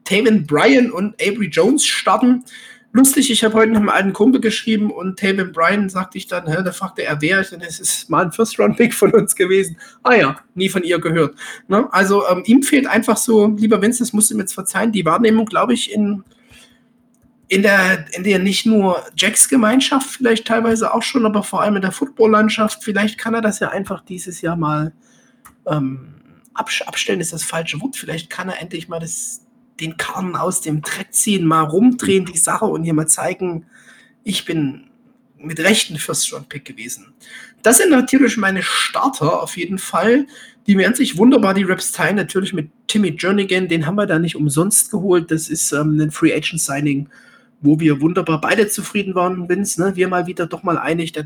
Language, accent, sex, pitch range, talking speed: German, German, male, 170-225 Hz, 200 wpm